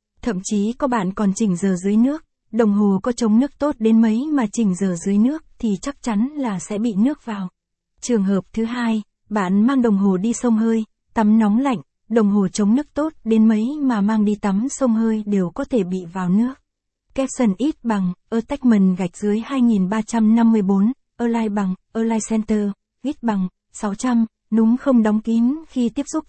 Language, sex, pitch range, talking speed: Vietnamese, female, 200-240 Hz, 190 wpm